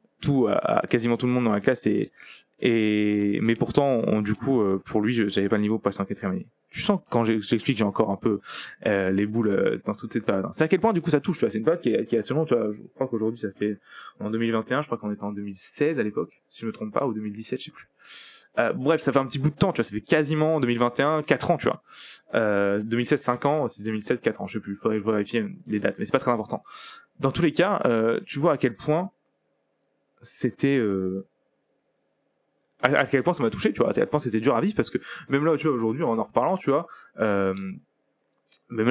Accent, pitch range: French, 105-150 Hz